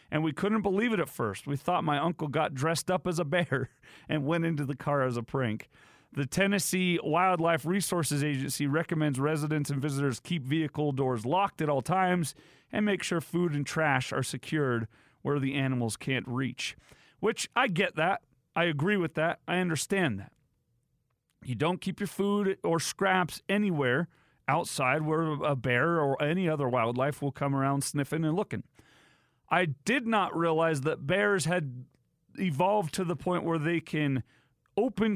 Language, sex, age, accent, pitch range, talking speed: English, male, 40-59, American, 135-185 Hz, 175 wpm